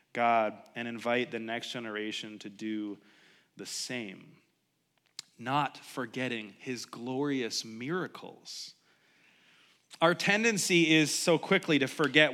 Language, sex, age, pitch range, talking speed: English, male, 30-49, 140-230 Hz, 105 wpm